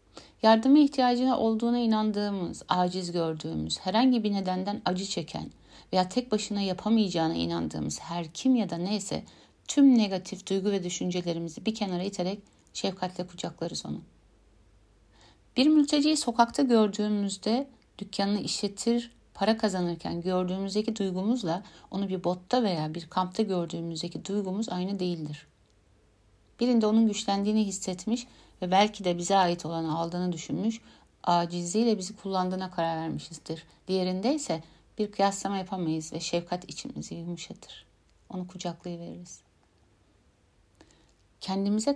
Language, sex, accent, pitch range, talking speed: Turkish, female, native, 165-210 Hz, 115 wpm